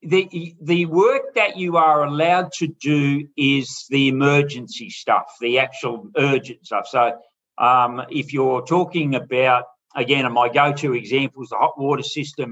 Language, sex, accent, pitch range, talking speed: English, male, Australian, 130-160 Hz, 150 wpm